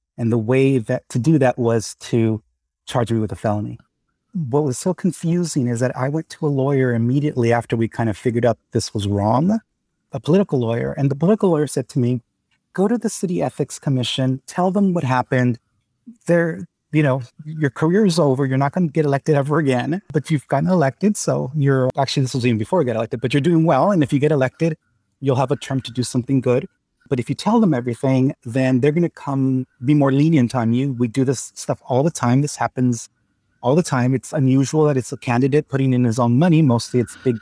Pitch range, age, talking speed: 120-155 Hz, 30-49, 230 wpm